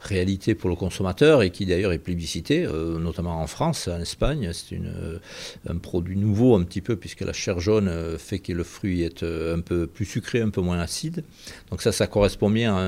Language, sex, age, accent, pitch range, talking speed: French, male, 50-69, French, 90-105 Hz, 210 wpm